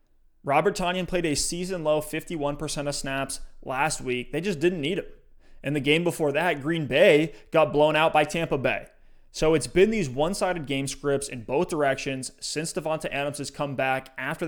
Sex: male